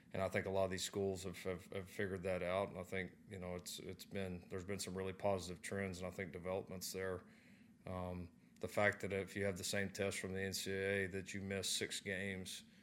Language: English